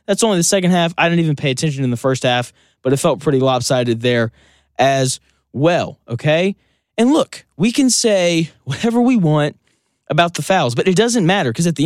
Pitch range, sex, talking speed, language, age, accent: 135-200 Hz, male, 210 wpm, English, 20-39, American